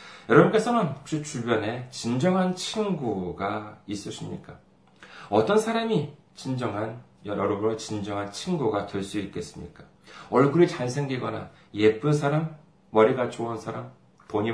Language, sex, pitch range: Korean, male, 115-180 Hz